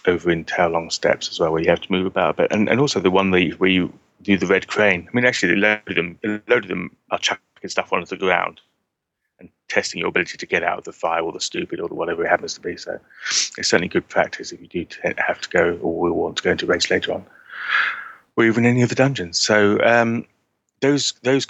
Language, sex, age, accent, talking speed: English, male, 30-49, British, 260 wpm